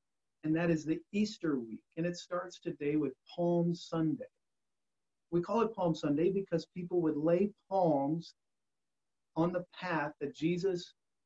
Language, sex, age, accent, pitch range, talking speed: English, male, 40-59, American, 170-205 Hz, 150 wpm